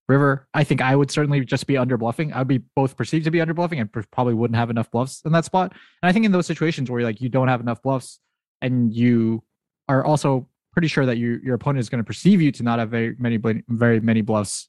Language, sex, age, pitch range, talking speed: English, male, 20-39, 110-135 Hz, 270 wpm